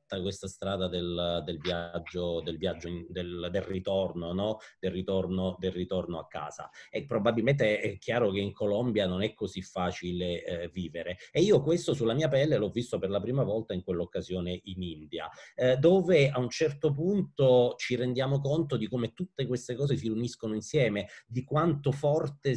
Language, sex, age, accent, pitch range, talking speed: Italian, male, 30-49, native, 100-135 Hz, 180 wpm